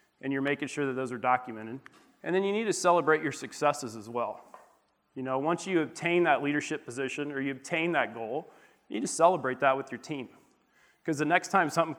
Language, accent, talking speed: English, American, 220 wpm